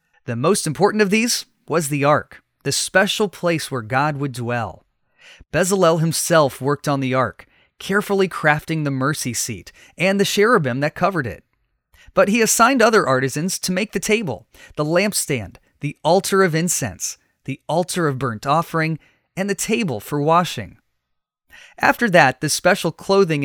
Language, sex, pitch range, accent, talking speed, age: English, male, 135-195 Hz, American, 160 wpm, 30-49